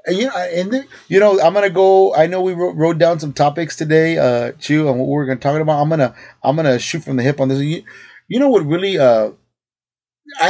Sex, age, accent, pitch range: male, 30-49, American, 130-180 Hz